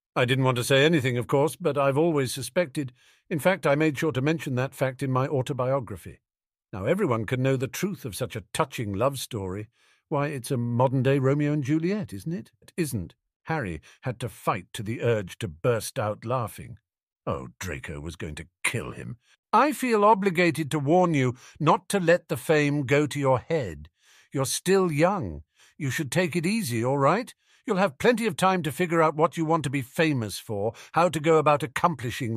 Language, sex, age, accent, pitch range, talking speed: English, male, 50-69, British, 115-165 Hz, 205 wpm